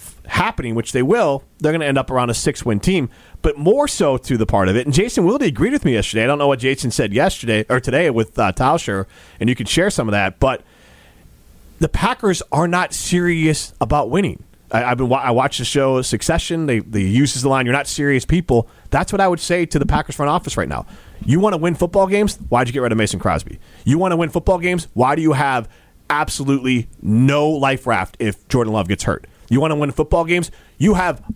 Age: 30-49